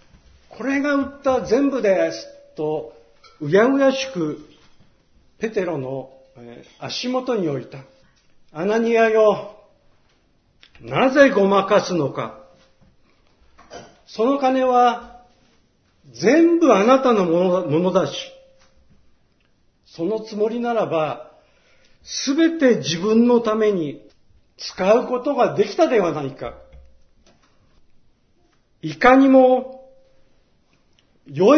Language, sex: Japanese, male